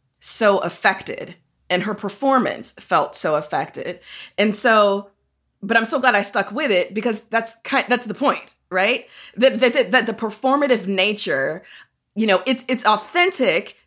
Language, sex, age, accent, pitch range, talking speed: English, female, 20-39, American, 180-225 Hz, 160 wpm